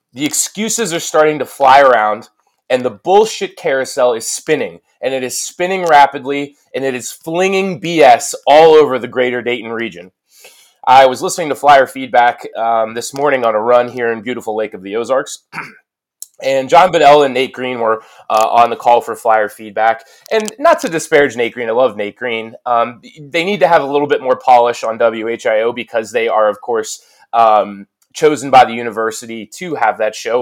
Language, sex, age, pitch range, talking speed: English, male, 20-39, 125-190 Hz, 195 wpm